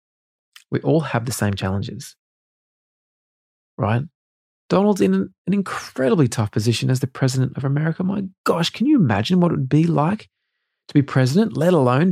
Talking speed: 165 wpm